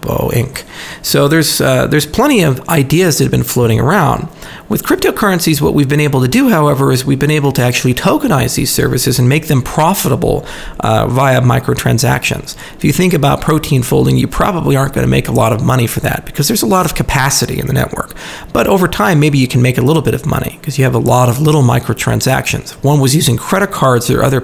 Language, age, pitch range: English, 40-59, 125-155 Hz